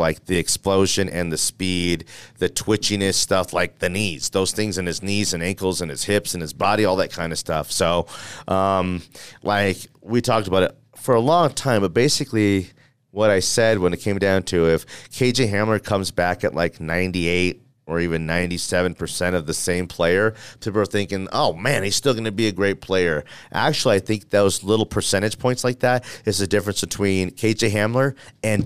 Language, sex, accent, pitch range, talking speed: English, male, American, 95-115 Hz, 200 wpm